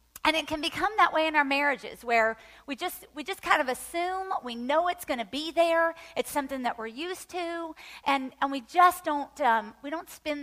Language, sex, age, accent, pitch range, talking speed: English, female, 40-59, American, 240-325 Hz, 225 wpm